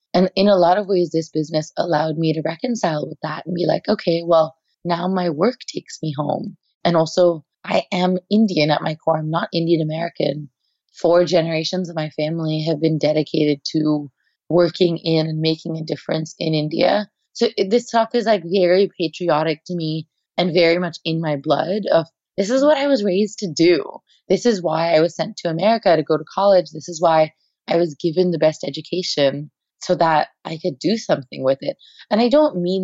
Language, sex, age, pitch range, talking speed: English, female, 20-39, 155-180 Hz, 205 wpm